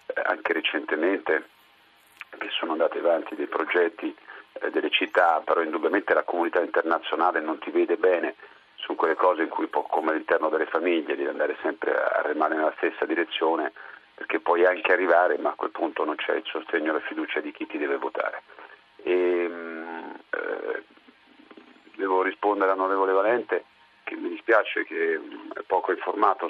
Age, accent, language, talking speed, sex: 40-59, native, Italian, 165 wpm, male